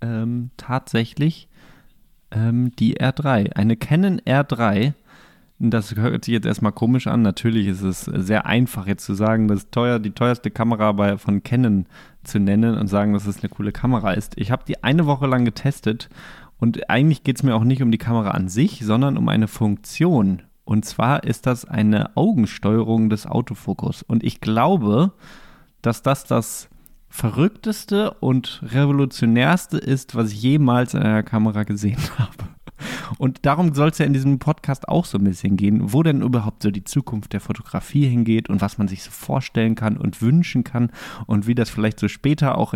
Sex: male